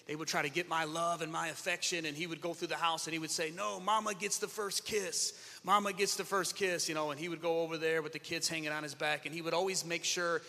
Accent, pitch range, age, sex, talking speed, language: American, 150-185 Hz, 30-49, male, 305 wpm, English